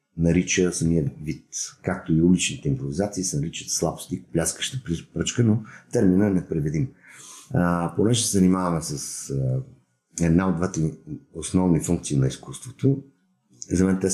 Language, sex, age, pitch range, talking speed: Bulgarian, male, 50-69, 80-100 Hz, 130 wpm